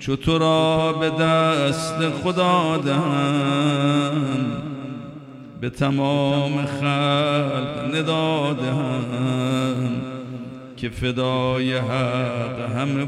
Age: 50-69